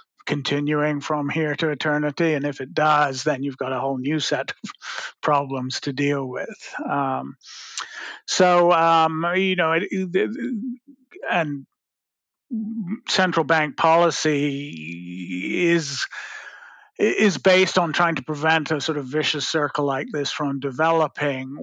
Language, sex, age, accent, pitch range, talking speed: English, male, 50-69, American, 140-165 Hz, 135 wpm